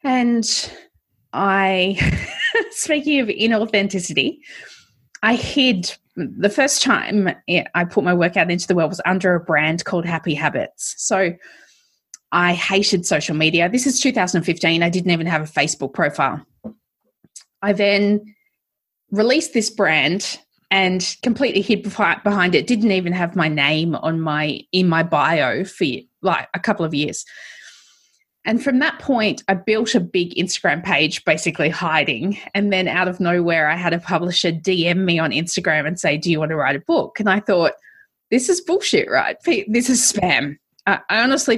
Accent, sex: Australian, female